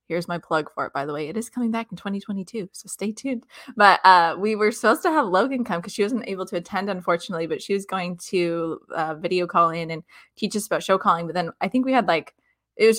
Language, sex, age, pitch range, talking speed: English, female, 20-39, 165-200 Hz, 265 wpm